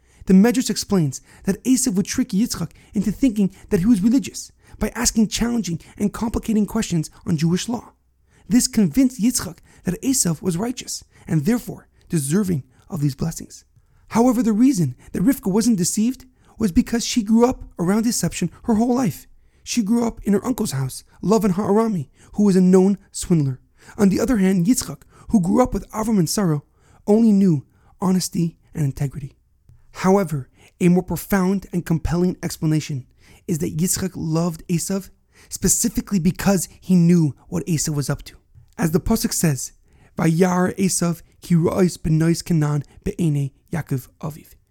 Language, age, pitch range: English, 40-59, 160-215 Hz